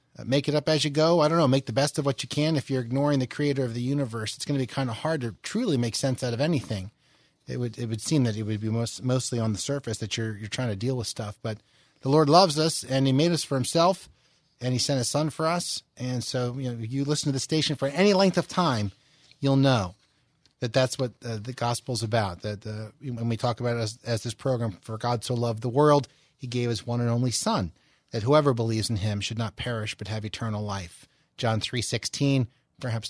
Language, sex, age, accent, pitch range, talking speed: English, male, 30-49, American, 115-145 Hz, 255 wpm